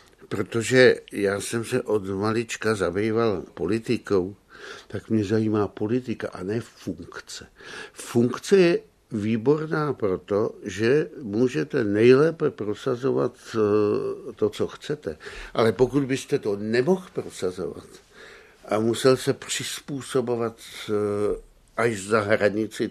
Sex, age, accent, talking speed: male, 60-79, native, 100 wpm